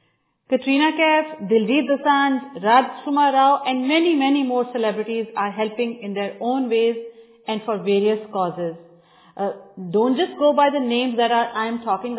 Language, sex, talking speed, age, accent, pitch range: Hindi, female, 165 wpm, 40-59, native, 205-260 Hz